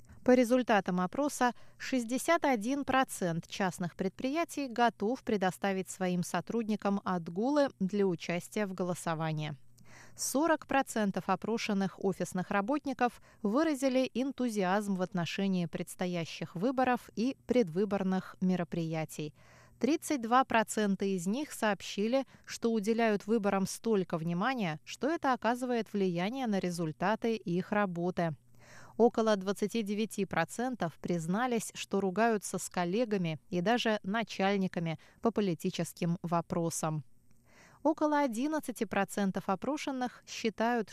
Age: 20-39